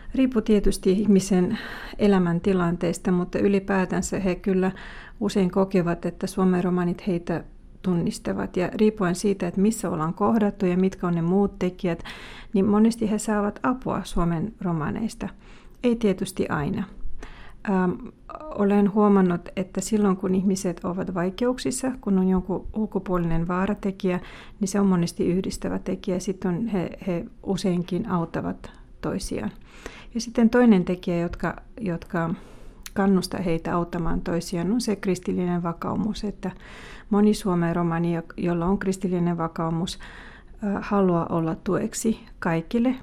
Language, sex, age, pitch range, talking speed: Finnish, female, 30-49, 175-205 Hz, 130 wpm